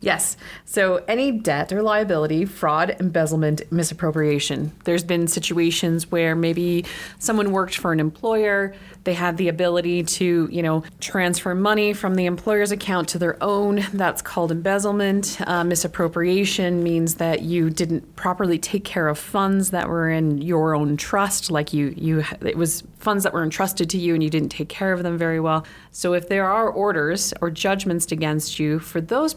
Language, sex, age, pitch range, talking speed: English, female, 30-49, 155-190 Hz, 175 wpm